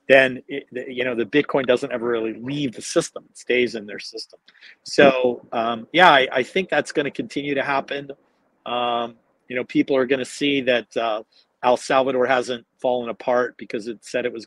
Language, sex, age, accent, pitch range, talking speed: English, male, 40-59, American, 120-140 Hz, 205 wpm